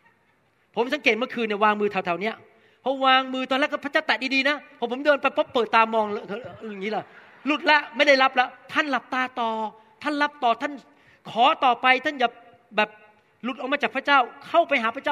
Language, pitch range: Thai, 205-255 Hz